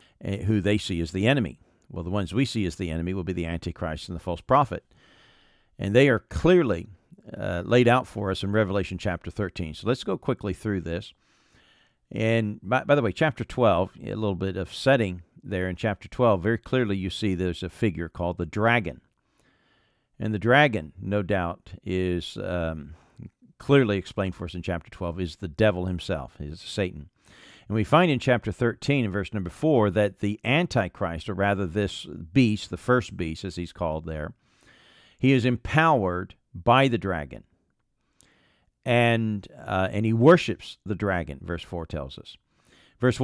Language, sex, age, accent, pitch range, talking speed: English, male, 50-69, American, 90-115 Hz, 180 wpm